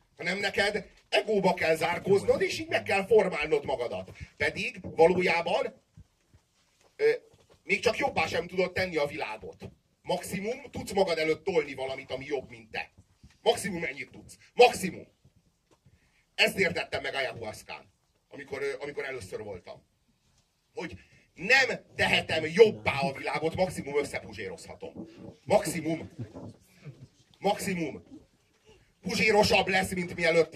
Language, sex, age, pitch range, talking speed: Hungarian, male, 40-59, 160-205 Hz, 115 wpm